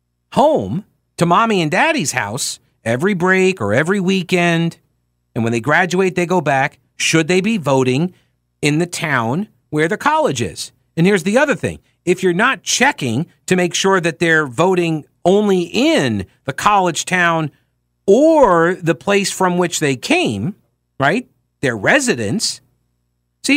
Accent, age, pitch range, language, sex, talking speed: American, 50-69, 120-185 Hz, English, male, 155 wpm